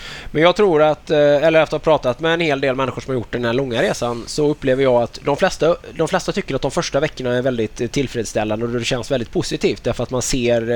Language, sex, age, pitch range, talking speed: Swedish, male, 20-39, 120-140 Hz, 255 wpm